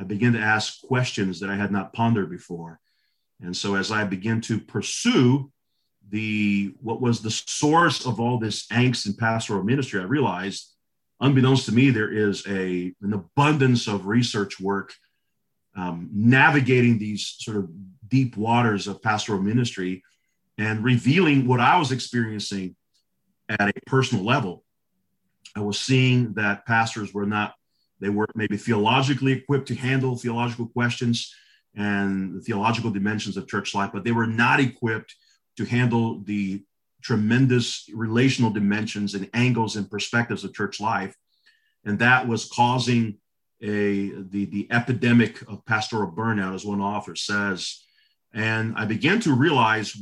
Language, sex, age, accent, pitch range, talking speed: English, male, 40-59, American, 100-125 Hz, 145 wpm